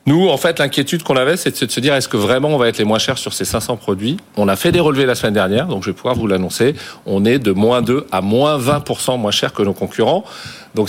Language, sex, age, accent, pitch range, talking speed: French, male, 40-59, French, 115-145 Hz, 280 wpm